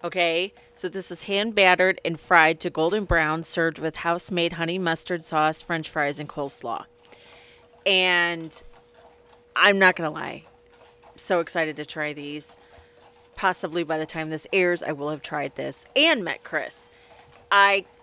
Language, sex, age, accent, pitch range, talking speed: English, female, 30-49, American, 160-190 Hz, 155 wpm